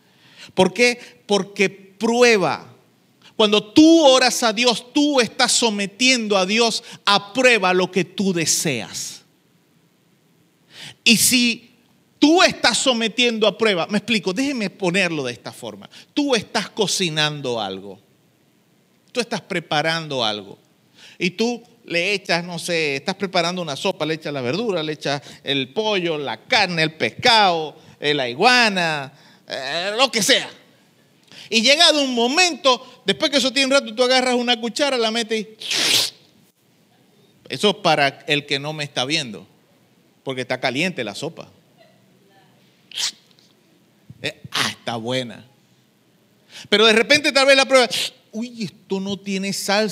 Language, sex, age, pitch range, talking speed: Spanish, male, 40-59, 165-240 Hz, 140 wpm